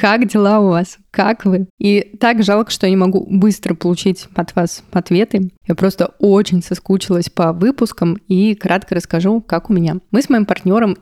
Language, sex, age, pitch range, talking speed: Russian, female, 20-39, 175-200 Hz, 185 wpm